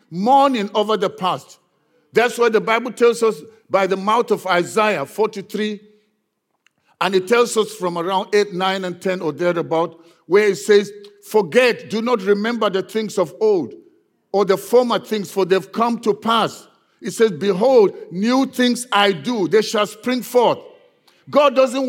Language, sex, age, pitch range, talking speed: English, male, 50-69, 190-245 Hz, 165 wpm